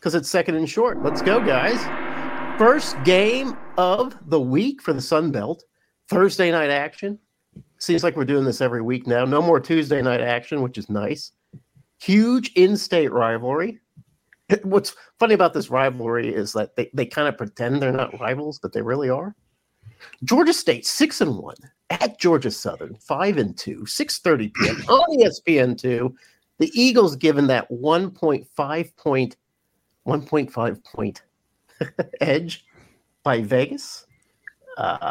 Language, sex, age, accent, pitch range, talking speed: English, male, 50-69, American, 125-195 Hz, 145 wpm